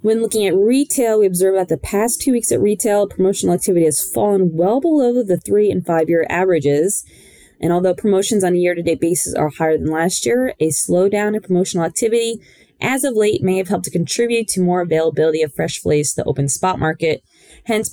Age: 20-39